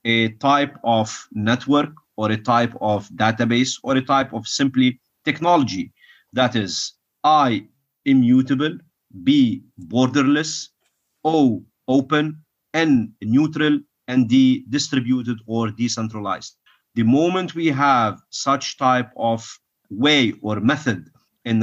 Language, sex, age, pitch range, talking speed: English, male, 40-59, 110-135 Hz, 115 wpm